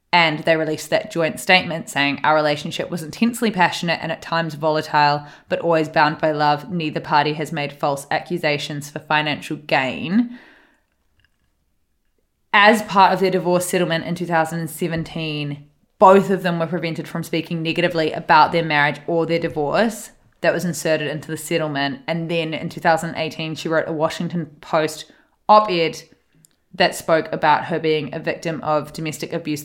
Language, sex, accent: English, female, Australian